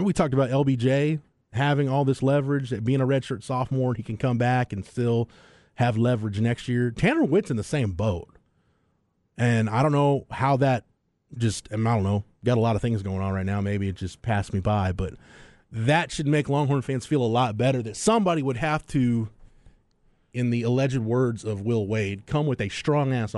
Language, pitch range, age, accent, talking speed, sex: English, 105-135 Hz, 30-49, American, 205 wpm, male